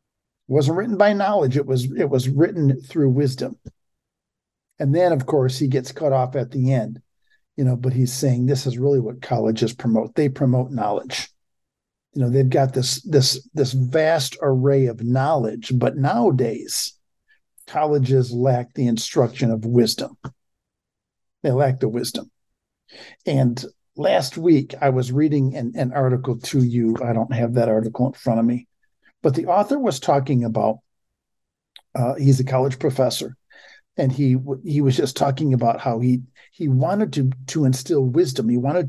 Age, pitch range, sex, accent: 50-69, 125-140 Hz, male, American